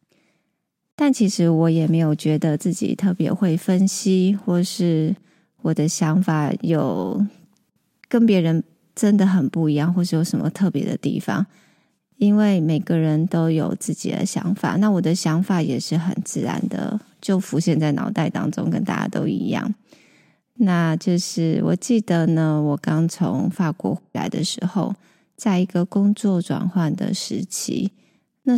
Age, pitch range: 20-39, 165-205 Hz